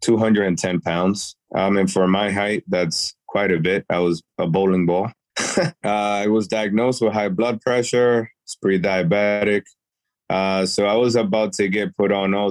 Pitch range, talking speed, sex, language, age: 95-110 Hz, 175 wpm, male, English, 20-39